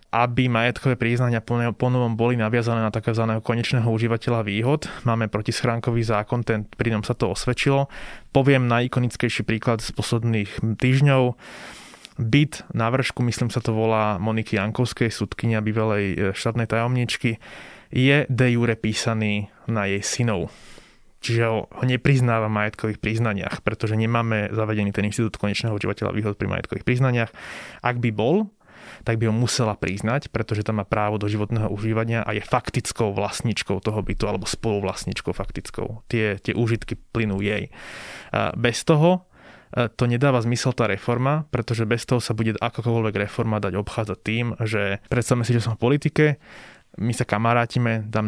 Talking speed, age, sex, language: 145 wpm, 20-39, male, Slovak